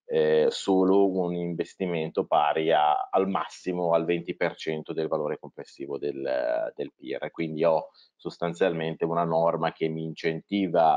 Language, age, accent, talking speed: Italian, 30-49, native, 125 wpm